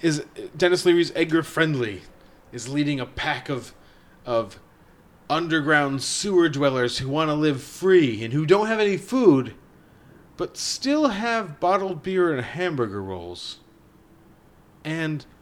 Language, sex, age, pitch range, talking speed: English, male, 30-49, 135-180 Hz, 130 wpm